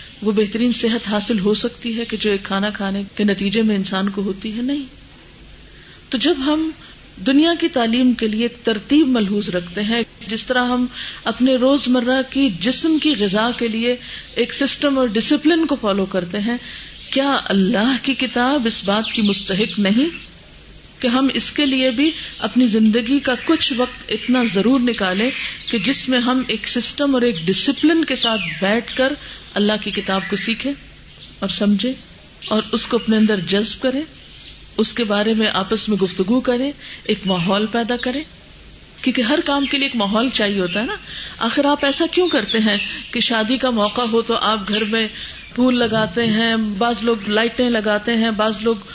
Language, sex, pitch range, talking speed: Urdu, female, 215-255 Hz, 185 wpm